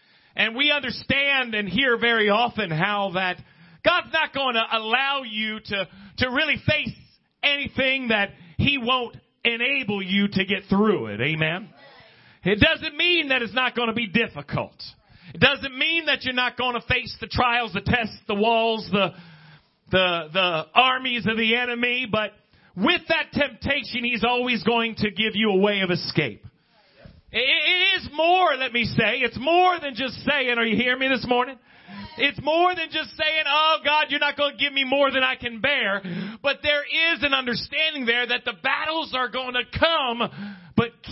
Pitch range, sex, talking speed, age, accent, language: 215-275 Hz, male, 180 wpm, 40-59, American, English